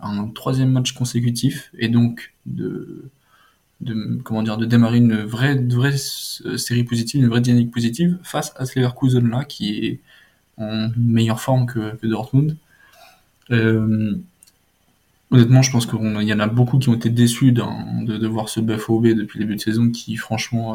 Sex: male